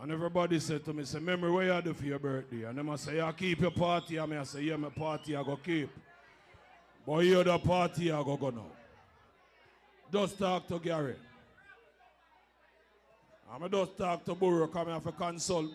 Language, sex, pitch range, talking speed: English, male, 150-185 Hz, 200 wpm